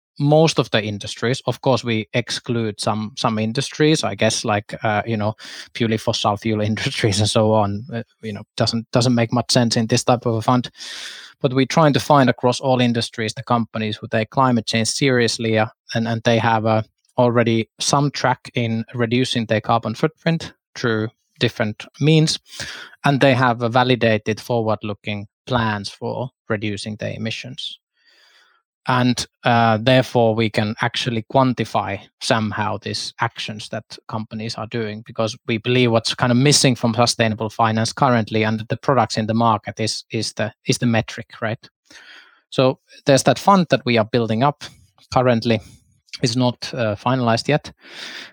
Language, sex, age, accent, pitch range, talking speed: English, male, 20-39, Finnish, 110-130 Hz, 170 wpm